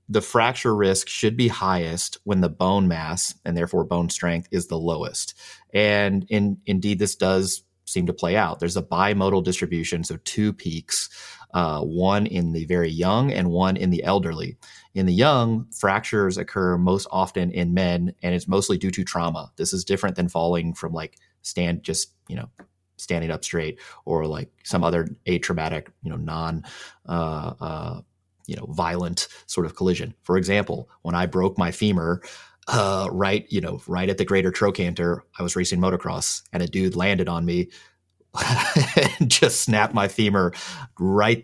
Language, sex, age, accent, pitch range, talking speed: English, male, 30-49, American, 85-100 Hz, 175 wpm